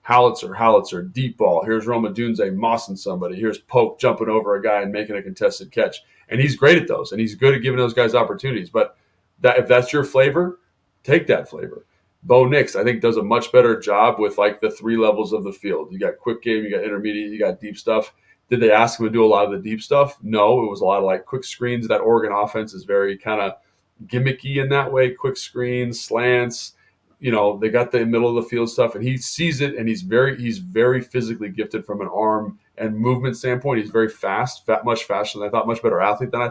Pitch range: 105-130 Hz